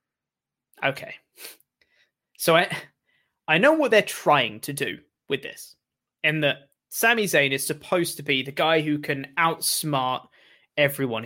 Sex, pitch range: male, 135-170 Hz